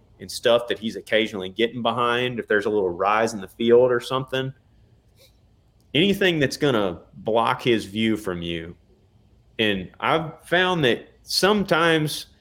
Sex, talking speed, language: male, 145 wpm, English